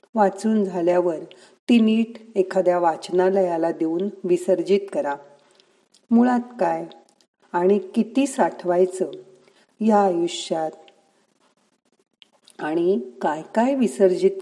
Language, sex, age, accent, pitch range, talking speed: Marathi, female, 50-69, native, 180-215 Hz, 85 wpm